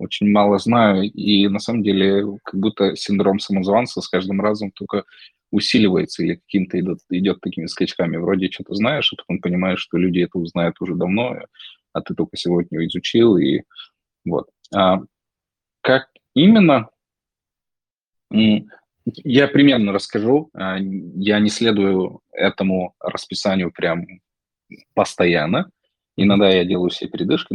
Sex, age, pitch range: male, 20-39, 95-110 Hz